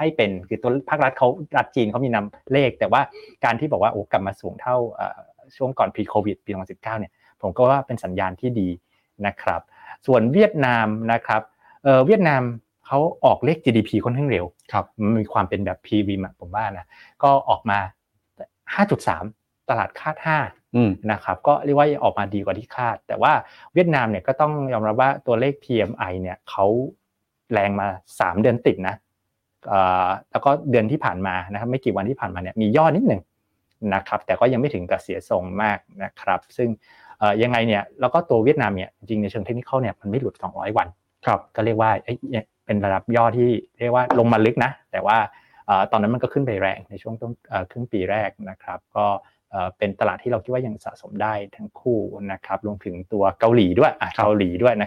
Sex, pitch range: male, 100-125 Hz